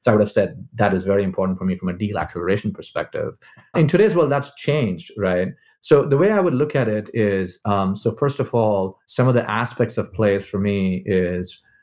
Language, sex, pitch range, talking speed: English, male, 95-115 Hz, 230 wpm